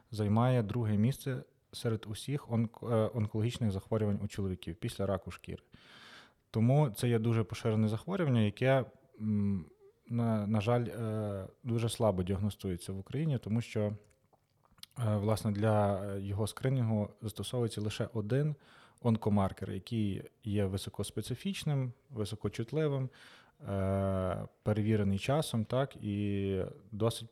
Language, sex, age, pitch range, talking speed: Ukrainian, male, 20-39, 100-120 Hz, 105 wpm